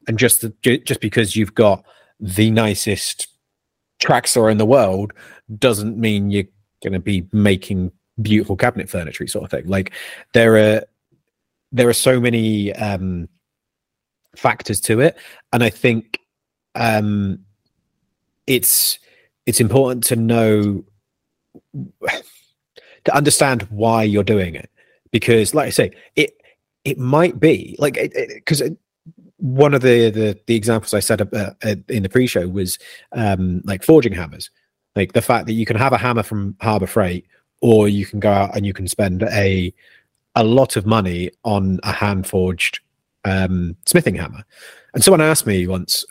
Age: 30-49